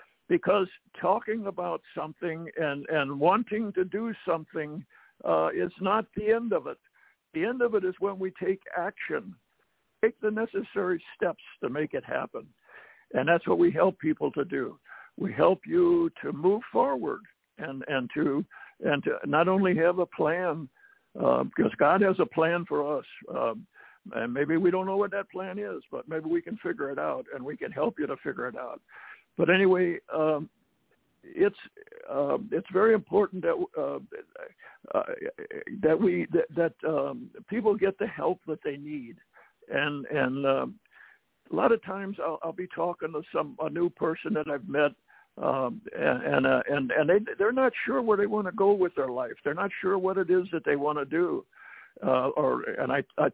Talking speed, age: 190 wpm, 60-79